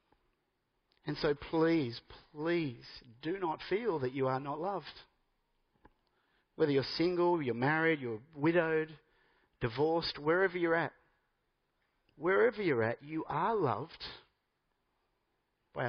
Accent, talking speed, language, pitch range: Australian, 115 wpm, English, 150-215 Hz